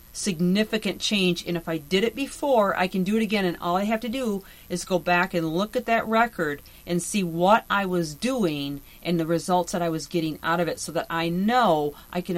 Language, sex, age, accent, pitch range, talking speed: English, female, 40-59, American, 165-195 Hz, 235 wpm